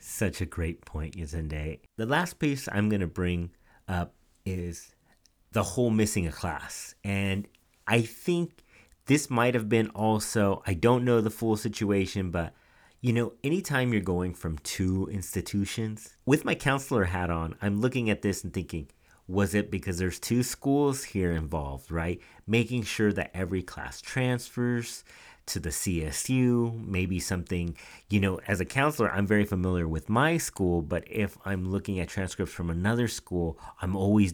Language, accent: English, American